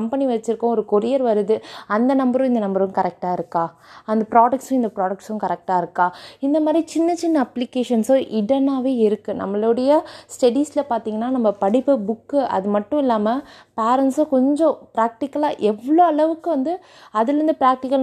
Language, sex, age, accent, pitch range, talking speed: Tamil, female, 20-39, native, 205-270 Hz, 100 wpm